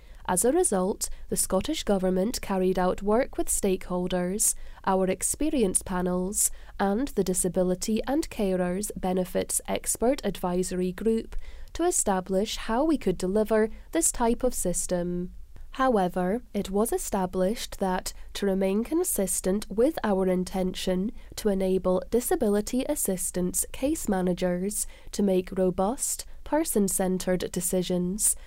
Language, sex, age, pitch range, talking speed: English, female, 10-29, 185-225 Hz, 115 wpm